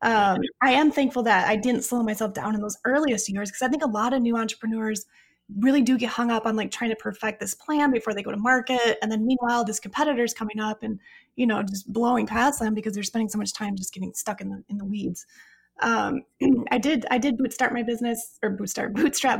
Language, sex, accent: English, female, American